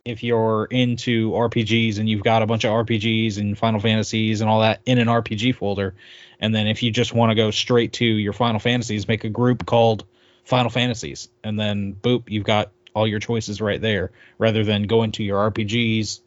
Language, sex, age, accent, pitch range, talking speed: English, male, 20-39, American, 105-120 Hz, 205 wpm